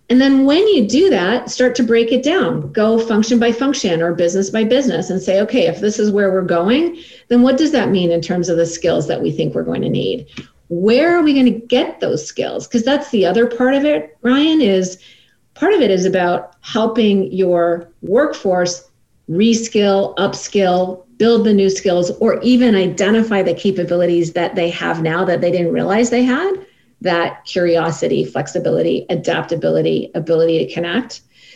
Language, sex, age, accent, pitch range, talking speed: English, female, 40-59, American, 185-250 Hz, 185 wpm